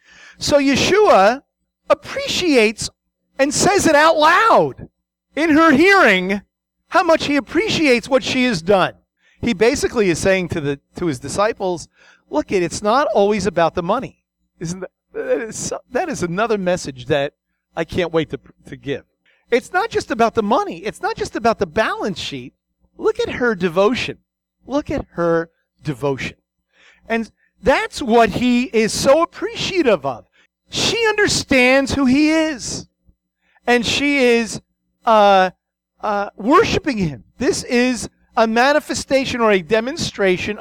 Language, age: English, 40-59